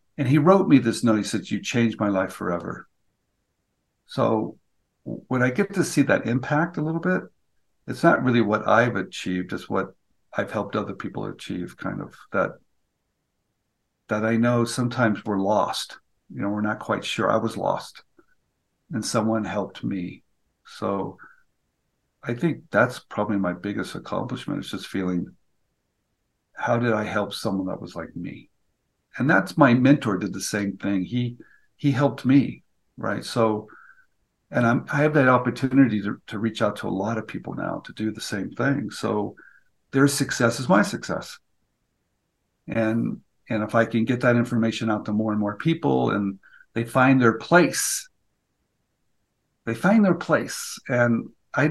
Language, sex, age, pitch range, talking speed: English, male, 50-69, 105-145 Hz, 170 wpm